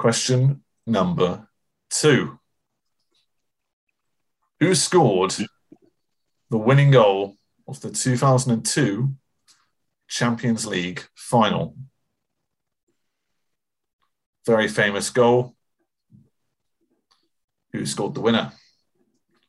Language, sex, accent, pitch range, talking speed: English, male, British, 110-135 Hz, 65 wpm